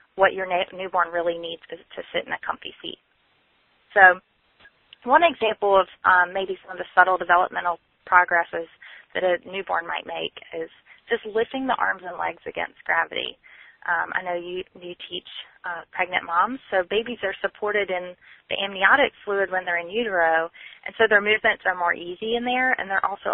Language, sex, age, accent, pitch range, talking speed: English, female, 20-39, American, 185-240 Hz, 185 wpm